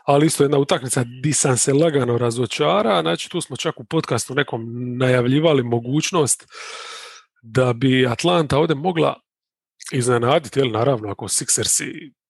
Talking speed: 130 wpm